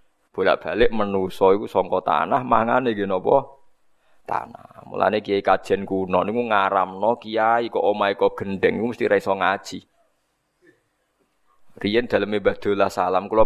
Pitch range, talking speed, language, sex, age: 100-120 Hz, 110 wpm, Indonesian, male, 20-39